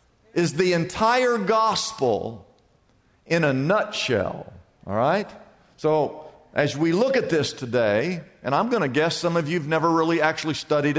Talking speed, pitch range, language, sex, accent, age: 155 wpm, 145-190 Hz, English, male, American, 50-69